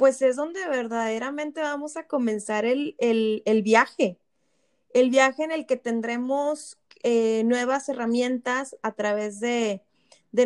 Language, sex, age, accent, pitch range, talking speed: Spanish, female, 20-39, Mexican, 235-285 Hz, 130 wpm